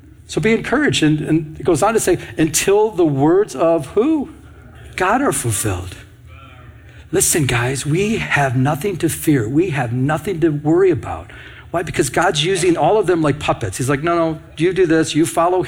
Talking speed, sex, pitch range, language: 190 wpm, male, 105-140 Hz, English